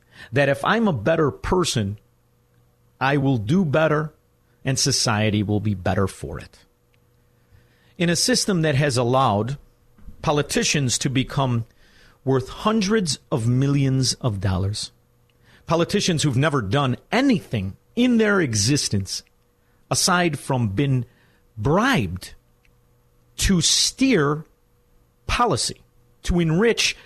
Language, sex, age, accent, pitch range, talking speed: English, male, 50-69, American, 100-150 Hz, 110 wpm